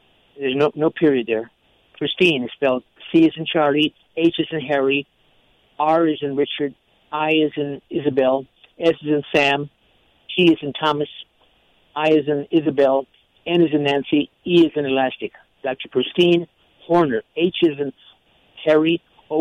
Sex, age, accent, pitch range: male, 60-79, American, 140-165 Hz